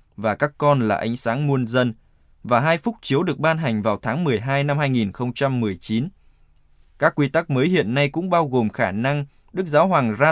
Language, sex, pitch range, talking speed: Vietnamese, male, 120-155 Hz, 205 wpm